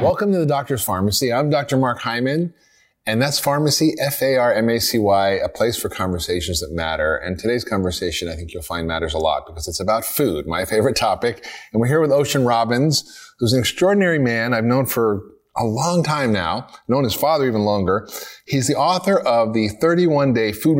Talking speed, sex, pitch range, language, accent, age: 195 wpm, male, 100-135 Hz, English, American, 30-49